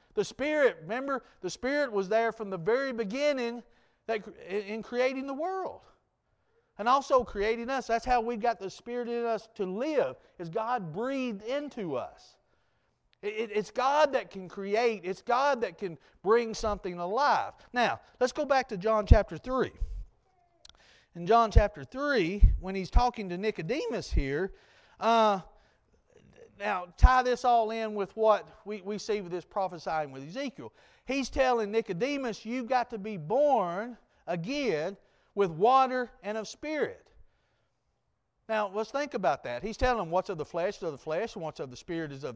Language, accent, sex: English, American, male